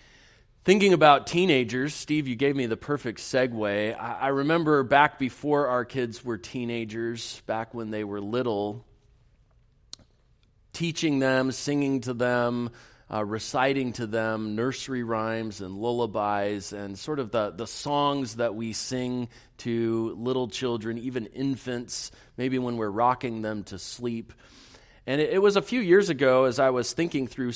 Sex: male